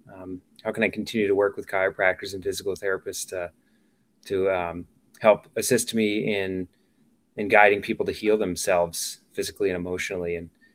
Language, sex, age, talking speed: English, male, 20-39, 160 wpm